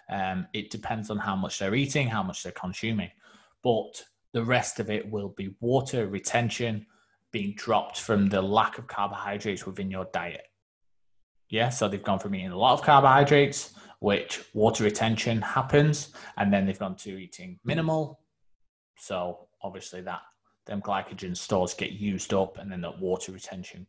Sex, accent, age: male, British, 20-39